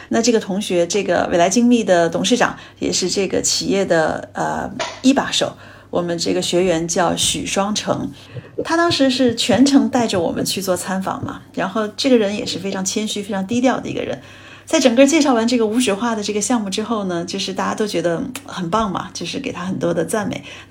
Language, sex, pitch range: Chinese, female, 200-270 Hz